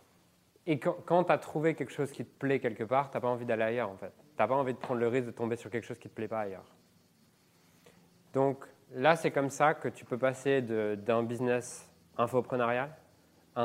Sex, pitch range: male, 115-135 Hz